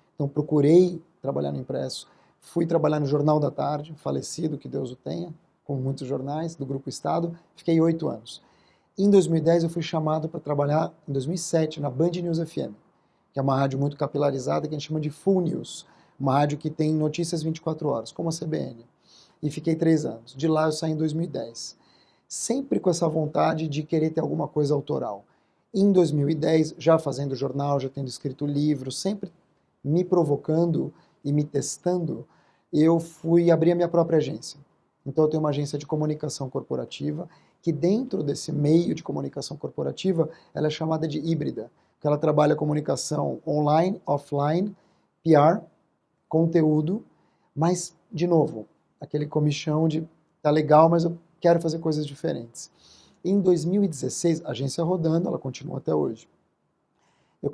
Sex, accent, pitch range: male, Brazilian, 145-170 Hz